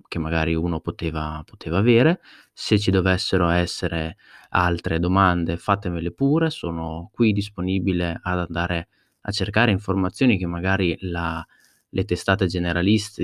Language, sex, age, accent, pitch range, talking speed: Italian, male, 30-49, native, 85-100 Hz, 125 wpm